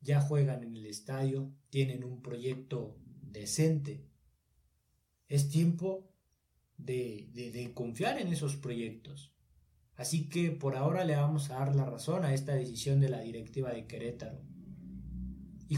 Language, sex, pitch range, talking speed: Spanish, male, 120-150 Hz, 140 wpm